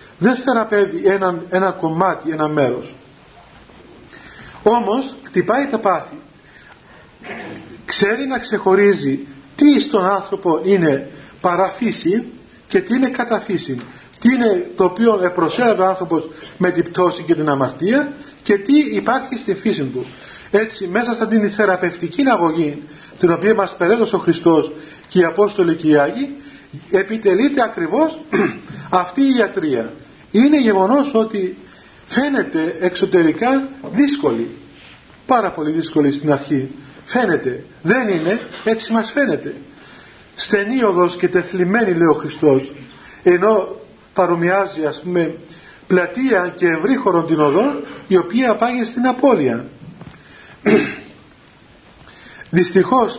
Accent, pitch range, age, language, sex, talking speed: native, 165-230 Hz, 40-59, Greek, male, 115 wpm